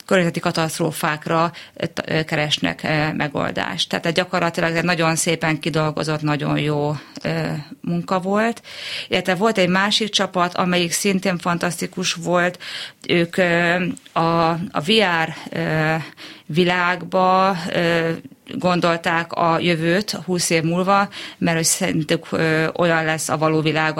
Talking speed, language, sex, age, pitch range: 105 wpm, Hungarian, female, 30-49, 155-180 Hz